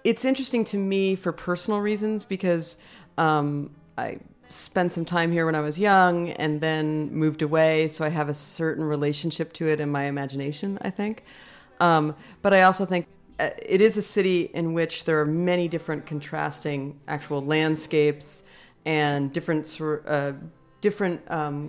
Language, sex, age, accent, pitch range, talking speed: English, female, 40-59, American, 145-175 Hz, 160 wpm